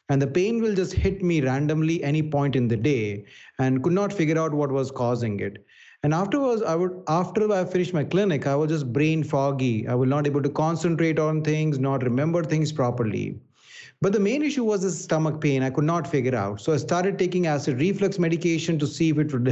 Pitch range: 140-175 Hz